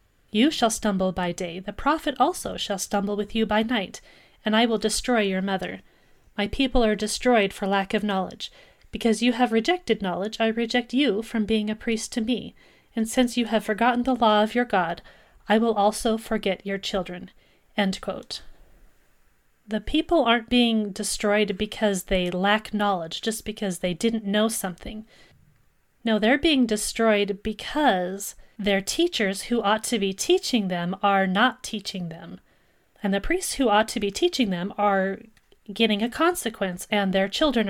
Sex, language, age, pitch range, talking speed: female, English, 30-49, 200-245 Hz, 170 wpm